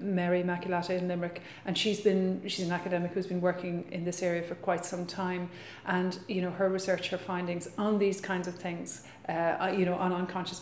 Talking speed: 210 wpm